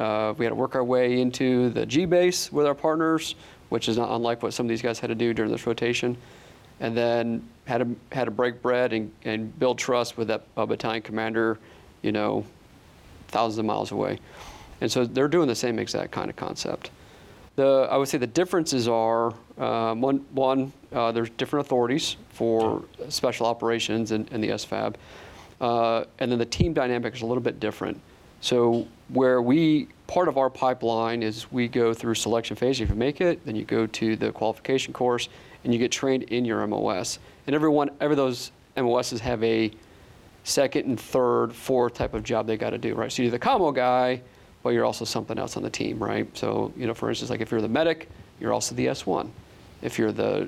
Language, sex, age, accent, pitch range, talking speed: English, male, 40-59, American, 115-130 Hz, 210 wpm